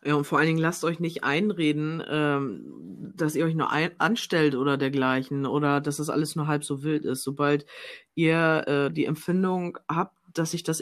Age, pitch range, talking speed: 20-39, 145-160 Hz, 190 wpm